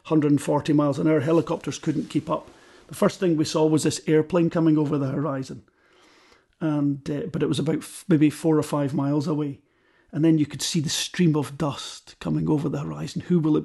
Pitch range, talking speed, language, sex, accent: 145-165 Hz, 215 wpm, English, male, British